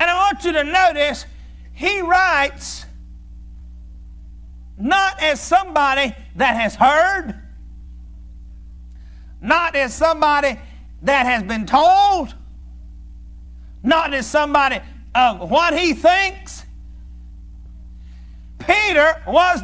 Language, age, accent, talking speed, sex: English, 50-69, American, 90 wpm, male